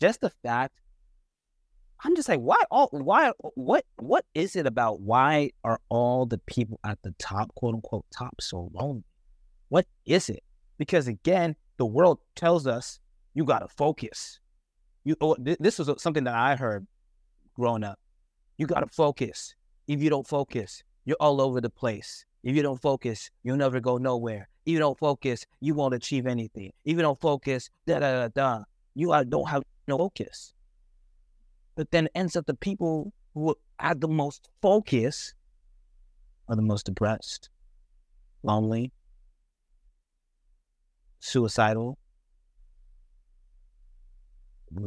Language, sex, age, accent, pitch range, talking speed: English, male, 30-49, American, 90-135 Hz, 140 wpm